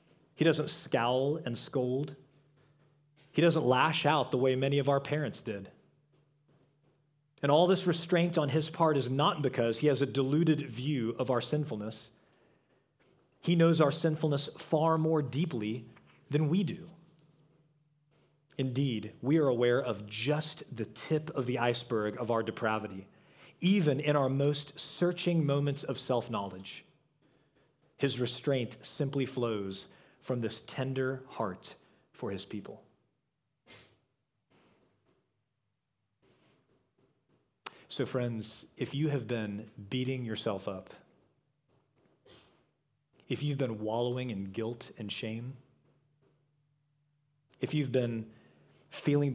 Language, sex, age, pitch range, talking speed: English, male, 40-59, 120-150 Hz, 120 wpm